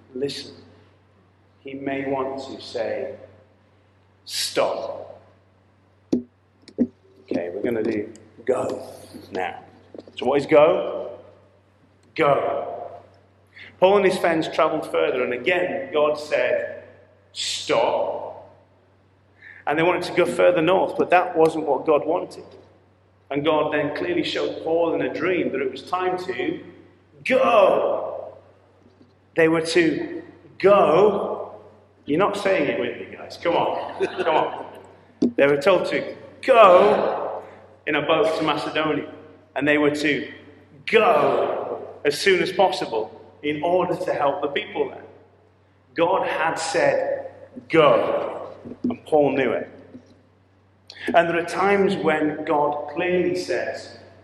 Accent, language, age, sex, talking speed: British, English, 40-59, male, 125 wpm